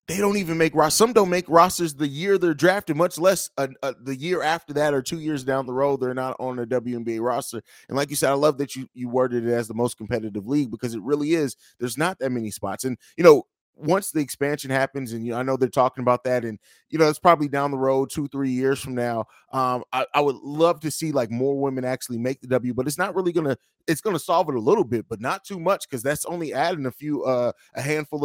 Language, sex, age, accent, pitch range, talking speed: English, male, 20-39, American, 125-155 Hz, 265 wpm